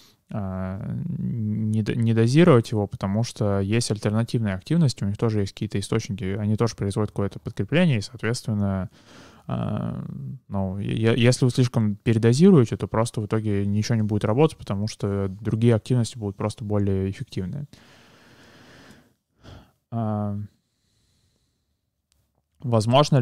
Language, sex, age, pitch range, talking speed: Russian, male, 20-39, 105-120 Hz, 110 wpm